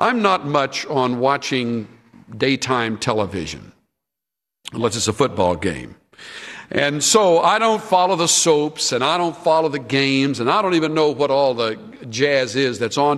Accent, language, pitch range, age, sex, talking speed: American, English, 120-160 Hz, 60-79, male, 170 wpm